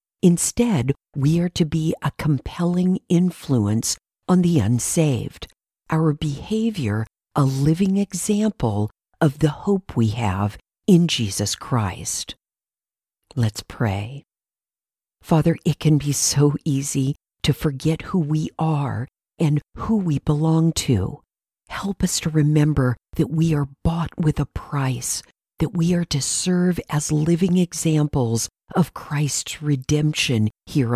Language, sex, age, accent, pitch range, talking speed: English, female, 50-69, American, 125-165 Hz, 125 wpm